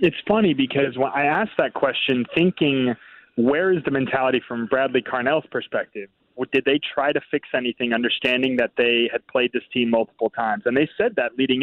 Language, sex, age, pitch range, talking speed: English, male, 30-49, 125-160 Hz, 195 wpm